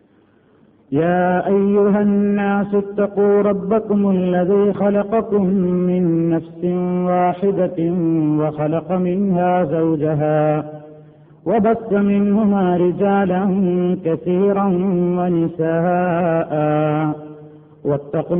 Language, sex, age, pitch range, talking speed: Malayalam, male, 50-69, 160-195 Hz, 60 wpm